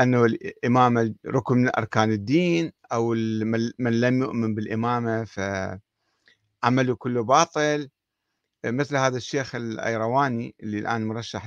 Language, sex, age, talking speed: Arabic, male, 50-69, 110 wpm